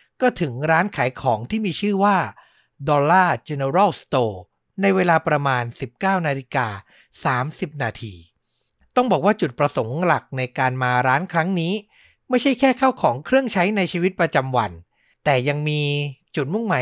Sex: male